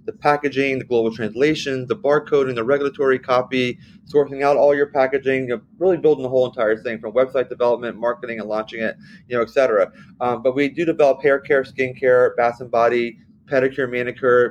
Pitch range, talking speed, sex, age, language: 115-135 Hz, 190 wpm, male, 30-49, English